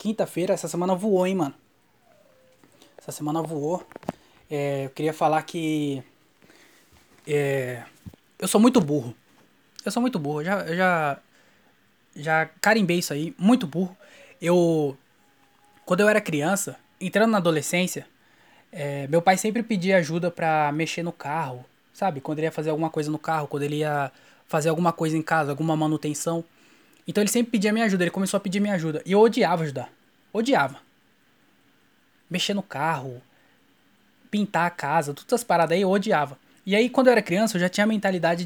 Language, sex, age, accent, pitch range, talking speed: Portuguese, male, 20-39, Brazilian, 155-205 Hz, 170 wpm